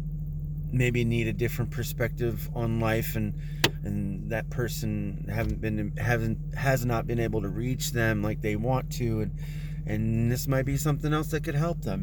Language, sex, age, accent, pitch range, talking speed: English, male, 30-49, American, 120-150 Hz, 180 wpm